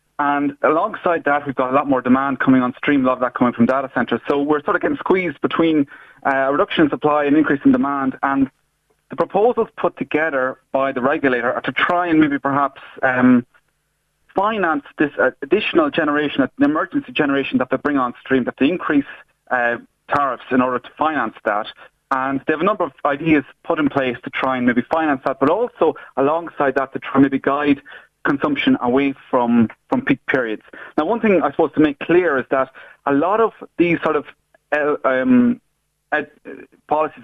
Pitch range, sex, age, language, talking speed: 130-165 Hz, male, 30-49, English, 200 wpm